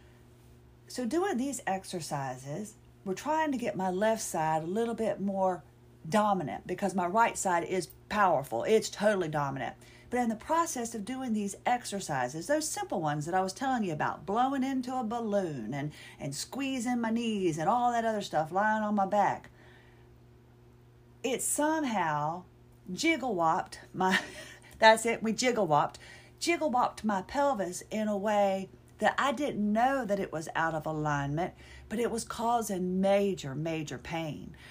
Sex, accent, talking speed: female, American, 155 wpm